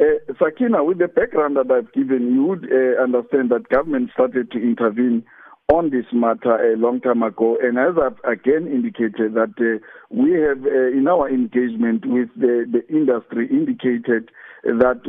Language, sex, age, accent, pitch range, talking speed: English, male, 50-69, South African, 120-150 Hz, 170 wpm